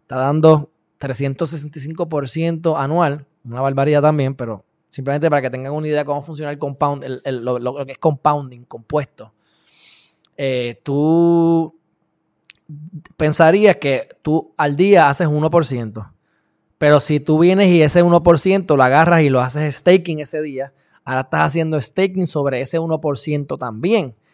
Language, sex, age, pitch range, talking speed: Spanish, male, 20-39, 140-170 Hz, 140 wpm